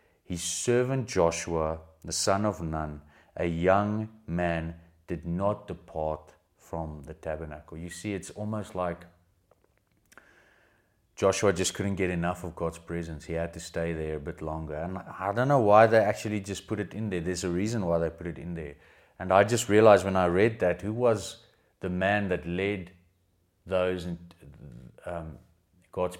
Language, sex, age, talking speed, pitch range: English, male, 30-49, 170 wpm, 85-95 Hz